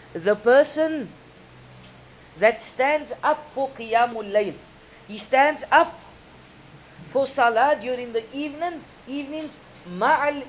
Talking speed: 105 wpm